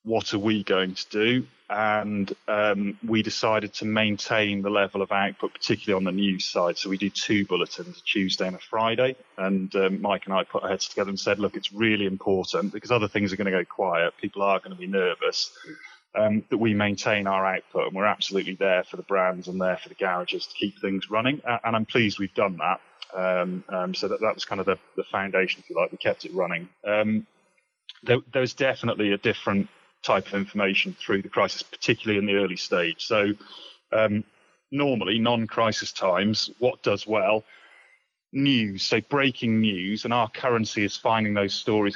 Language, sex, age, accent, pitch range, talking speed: English, male, 30-49, British, 100-115 Hz, 205 wpm